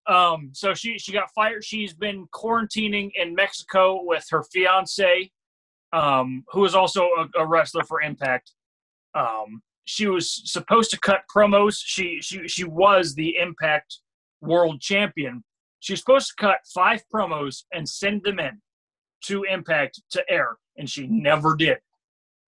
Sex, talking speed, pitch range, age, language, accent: male, 150 wpm, 160-210 Hz, 30-49, English, American